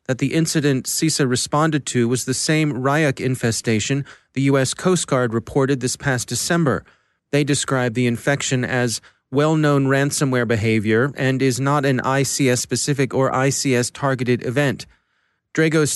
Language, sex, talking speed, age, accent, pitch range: English, male, 130 wpm, 30-49, American, 125-145 Hz